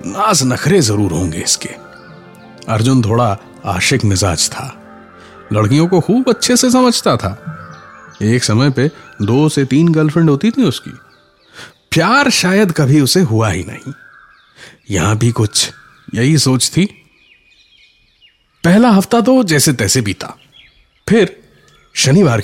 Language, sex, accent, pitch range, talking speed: Hindi, male, native, 115-180 Hz, 125 wpm